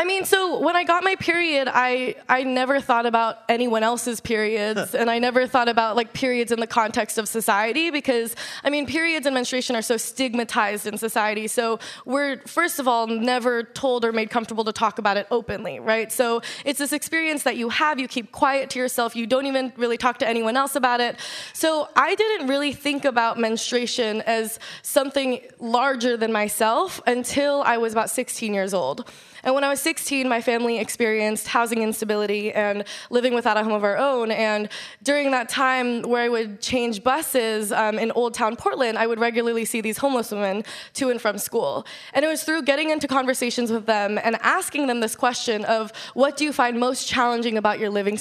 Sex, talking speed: female, 205 wpm